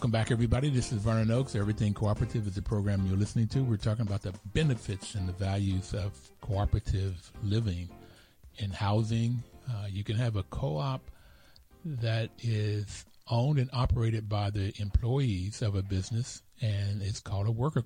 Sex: male